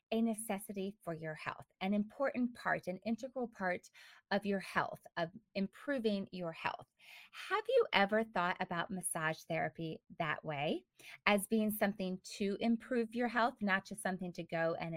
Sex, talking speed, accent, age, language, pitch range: female, 160 wpm, American, 20-39, English, 180-230 Hz